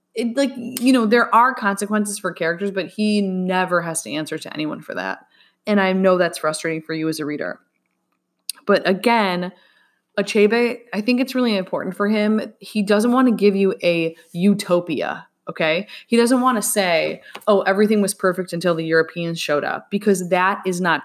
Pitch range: 175-230 Hz